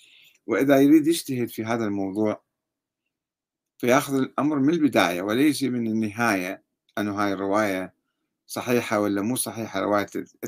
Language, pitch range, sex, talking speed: Arabic, 105-135 Hz, male, 120 wpm